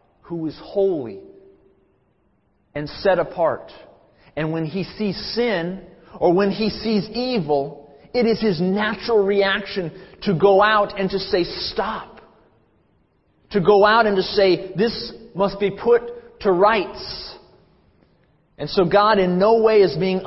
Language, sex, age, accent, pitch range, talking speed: English, male, 30-49, American, 125-200 Hz, 140 wpm